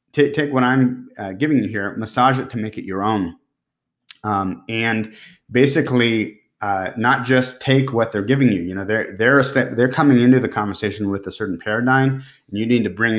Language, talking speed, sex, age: English, 190 wpm, male, 30-49